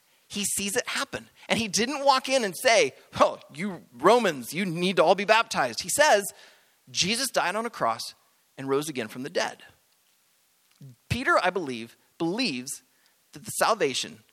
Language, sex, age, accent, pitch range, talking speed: English, male, 30-49, American, 165-245 Hz, 170 wpm